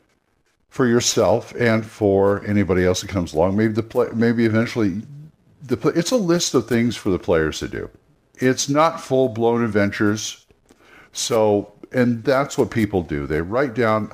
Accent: American